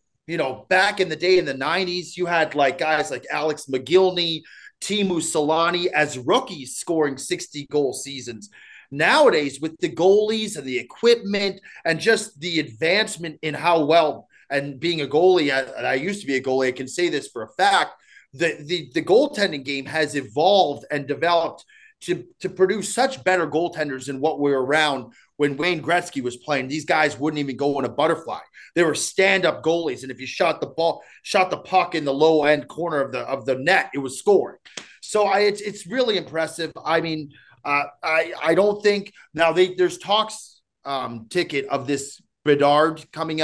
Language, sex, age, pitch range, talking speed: English, male, 30-49, 140-180 Hz, 190 wpm